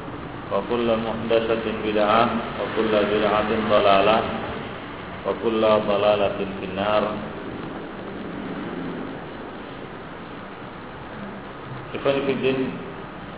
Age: 40-59